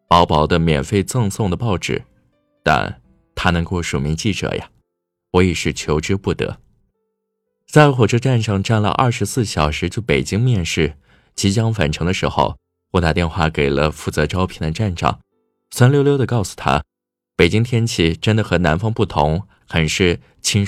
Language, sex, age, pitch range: Chinese, male, 20-39, 75-105 Hz